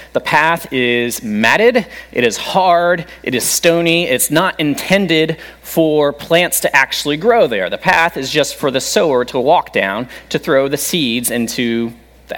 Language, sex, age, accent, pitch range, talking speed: English, male, 30-49, American, 120-185 Hz, 170 wpm